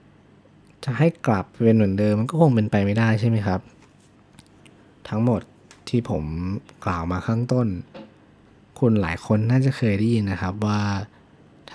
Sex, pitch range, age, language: male, 95-120 Hz, 20-39, Thai